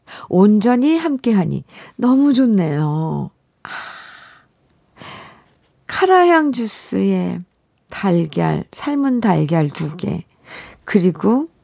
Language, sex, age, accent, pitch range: Korean, female, 50-69, native, 165-245 Hz